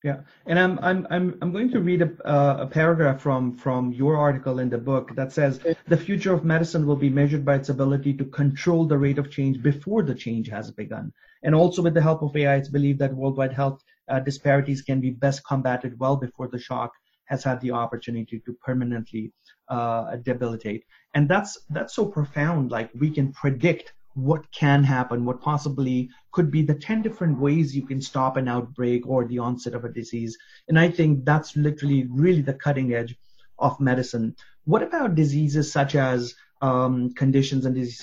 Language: English